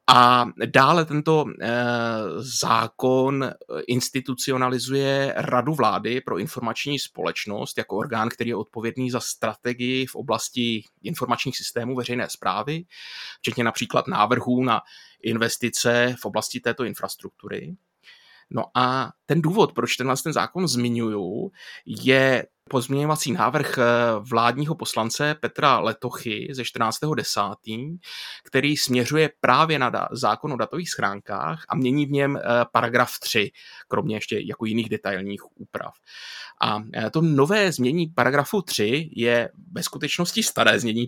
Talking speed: 115 wpm